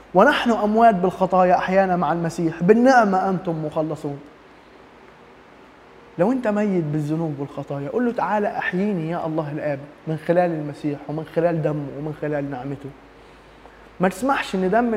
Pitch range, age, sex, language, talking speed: 155-210 Hz, 20-39, male, Arabic, 135 wpm